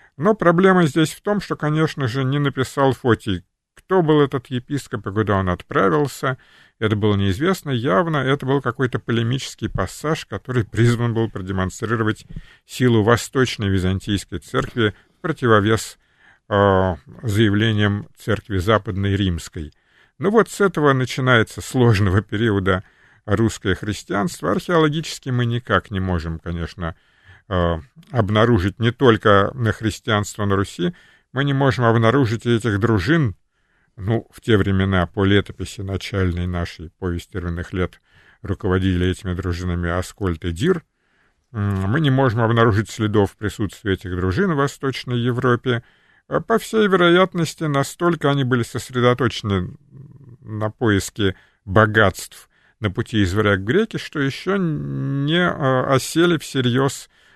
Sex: male